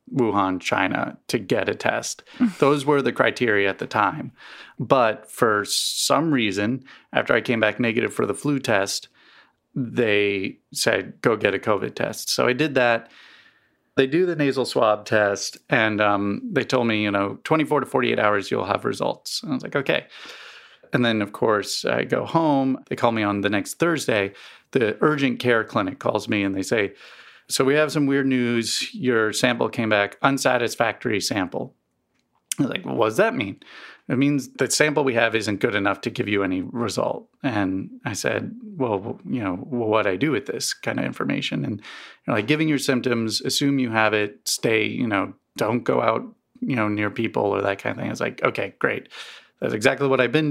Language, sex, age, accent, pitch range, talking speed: English, male, 30-49, American, 105-140 Hz, 200 wpm